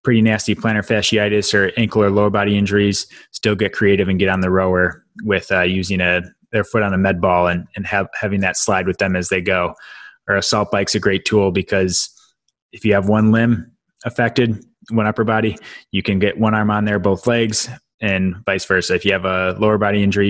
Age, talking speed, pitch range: 20-39, 220 wpm, 95-110 Hz